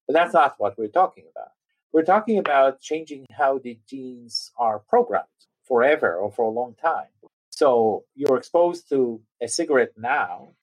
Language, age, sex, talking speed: English, 40-59, male, 165 wpm